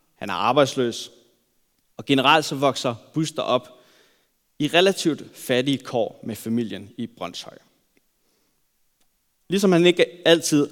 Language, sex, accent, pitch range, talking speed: Danish, male, native, 125-180 Hz, 120 wpm